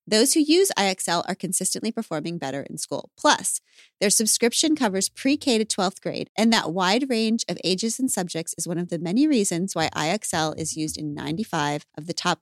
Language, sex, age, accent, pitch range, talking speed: English, female, 30-49, American, 165-225 Hz, 200 wpm